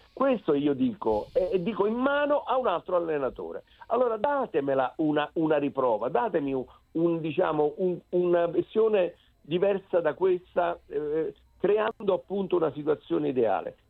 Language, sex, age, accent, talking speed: Italian, male, 50-69, native, 145 wpm